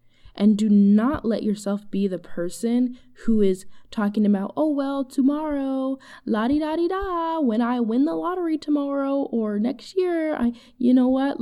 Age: 10-29